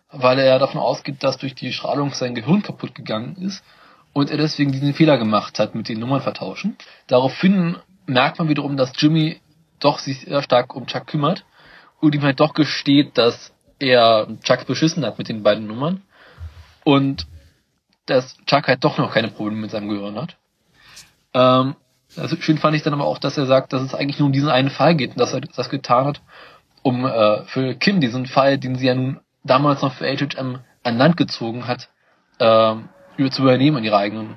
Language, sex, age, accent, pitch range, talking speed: German, male, 20-39, German, 125-150 Hz, 200 wpm